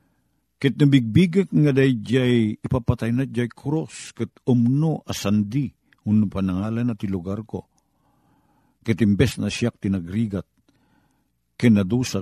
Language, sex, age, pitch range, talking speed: Filipino, male, 50-69, 90-120 Hz, 120 wpm